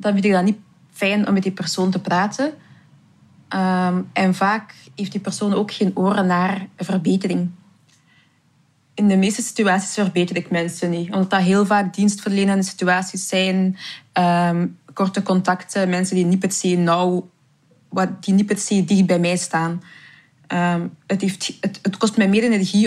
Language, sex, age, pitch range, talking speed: Dutch, female, 20-39, 175-205 Hz, 165 wpm